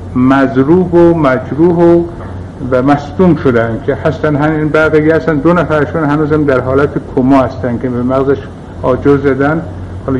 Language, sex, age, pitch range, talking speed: Persian, male, 60-79, 130-170 Hz, 140 wpm